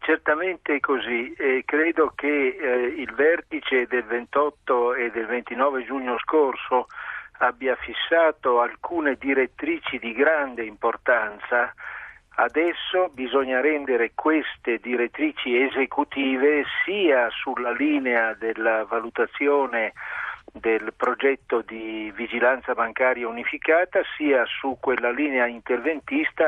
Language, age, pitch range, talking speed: Italian, 50-69, 120-150 Hz, 100 wpm